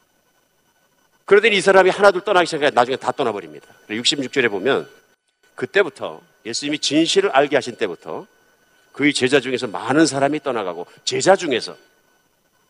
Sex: male